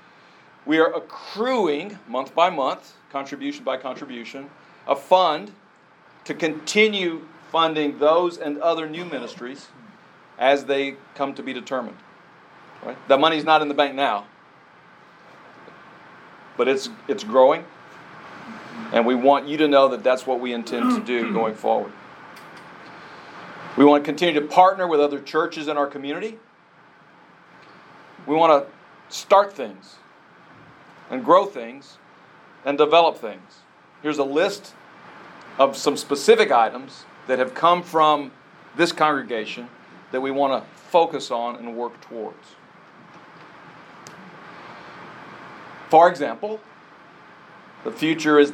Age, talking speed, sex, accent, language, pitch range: 40-59, 125 wpm, male, American, English, 135-160 Hz